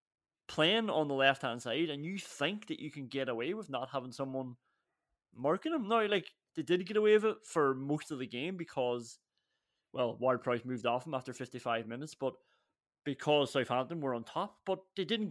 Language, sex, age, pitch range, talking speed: English, male, 20-39, 130-170 Hz, 200 wpm